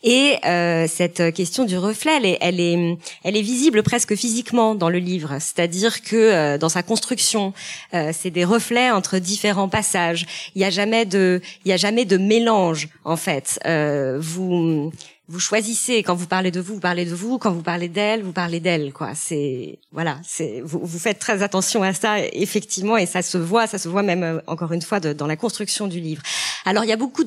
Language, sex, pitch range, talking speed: French, female, 175-225 Hz, 200 wpm